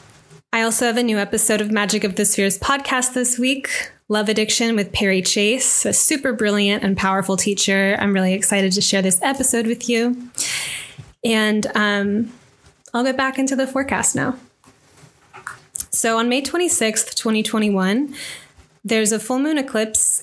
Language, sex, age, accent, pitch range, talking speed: English, female, 10-29, American, 200-235 Hz, 155 wpm